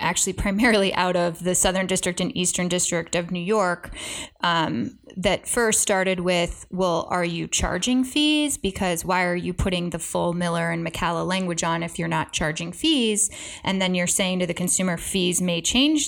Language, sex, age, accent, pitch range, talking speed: English, female, 20-39, American, 180-215 Hz, 185 wpm